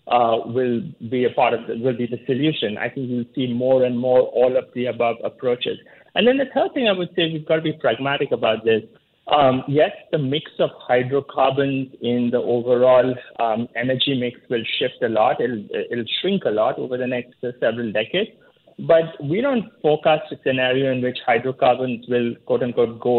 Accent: Indian